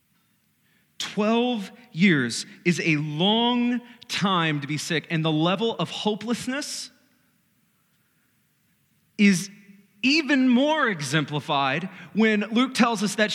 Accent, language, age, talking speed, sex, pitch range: American, English, 30-49, 105 wpm, male, 170-225 Hz